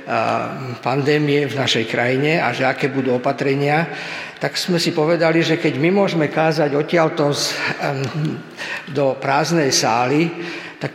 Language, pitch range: Slovak, 135-165 Hz